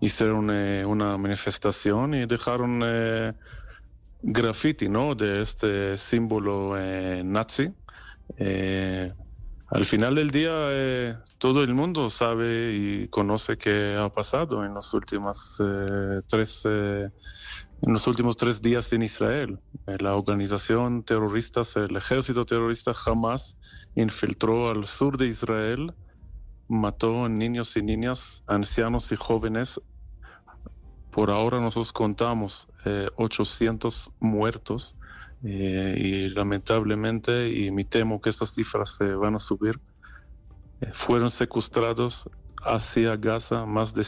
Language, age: Spanish, 30-49